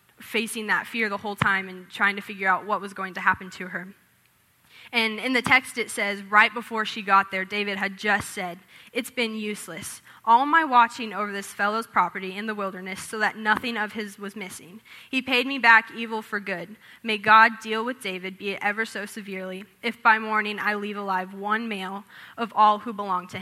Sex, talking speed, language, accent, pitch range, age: female, 215 wpm, English, American, 195-225 Hz, 10-29